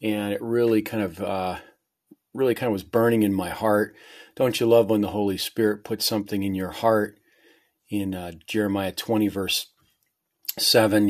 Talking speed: 175 wpm